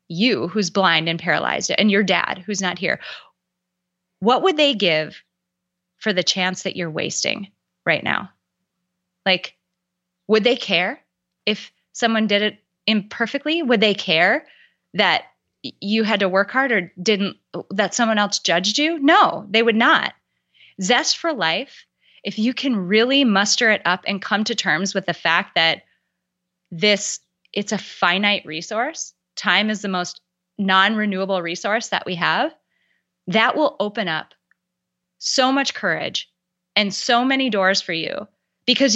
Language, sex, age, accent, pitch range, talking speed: English, female, 20-39, American, 180-220 Hz, 150 wpm